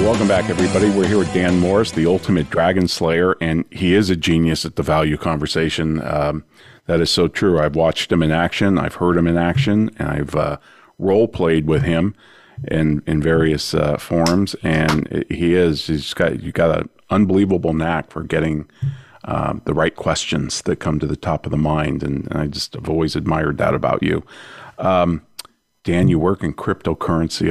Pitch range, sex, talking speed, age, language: 80-90 Hz, male, 190 wpm, 40-59, English